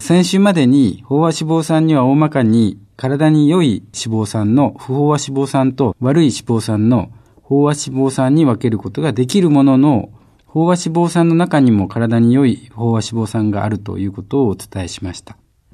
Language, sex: Japanese, male